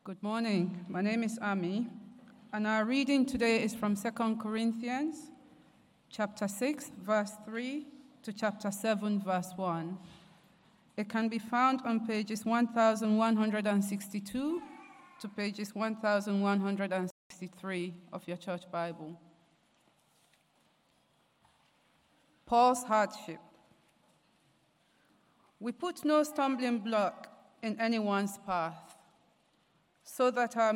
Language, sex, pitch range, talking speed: English, female, 200-255 Hz, 100 wpm